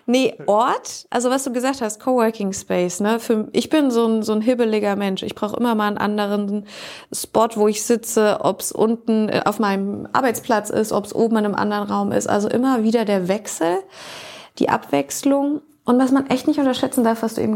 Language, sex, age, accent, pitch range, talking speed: German, female, 30-49, German, 195-240 Hz, 205 wpm